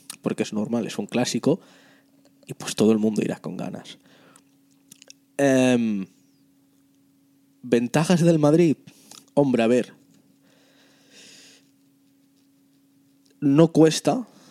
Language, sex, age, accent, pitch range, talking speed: Spanish, male, 20-39, Spanish, 115-170 Hz, 95 wpm